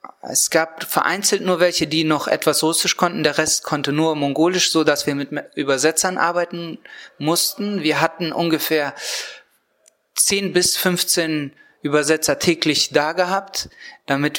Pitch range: 145-180 Hz